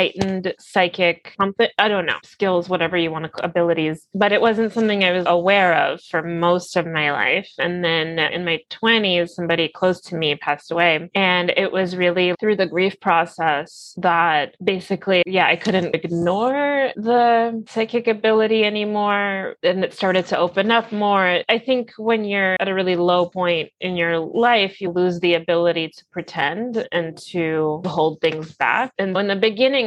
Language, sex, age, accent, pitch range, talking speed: English, female, 30-49, American, 170-210 Hz, 175 wpm